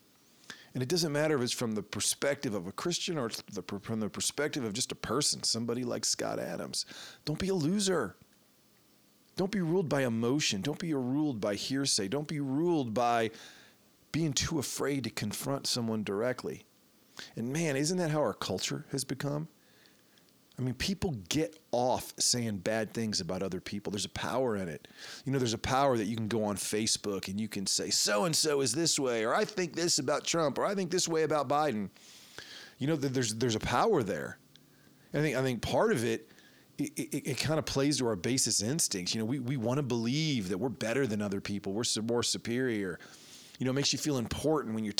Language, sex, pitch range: English, male, 110-150 Hz